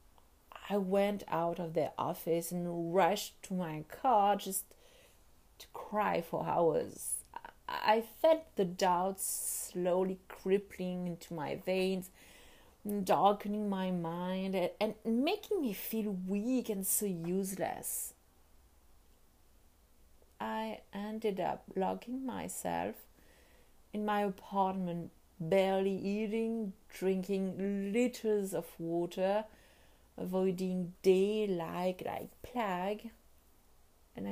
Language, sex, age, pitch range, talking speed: English, female, 30-49, 155-200 Hz, 100 wpm